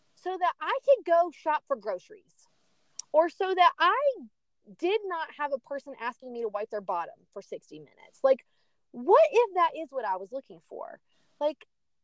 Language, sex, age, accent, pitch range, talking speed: English, female, 30-49, American, 230-330 Hz, 185 wpm